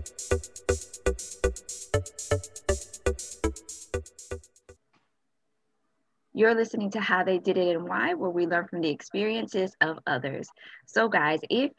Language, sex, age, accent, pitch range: English, female, 20-39, American, 165-200 Hz